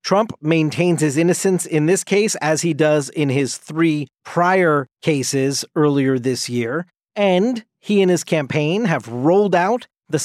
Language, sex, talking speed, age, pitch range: English, male, 160 wpm, 40-59, 140-180 Hz